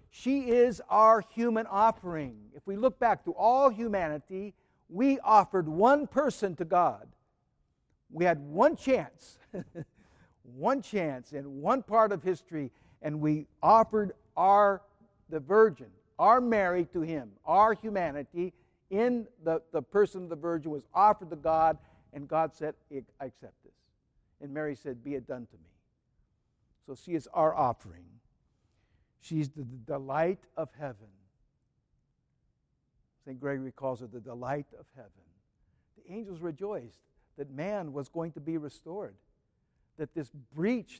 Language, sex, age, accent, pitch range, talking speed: English, male, 60-79, American, 140-195 Hz, 140 wpm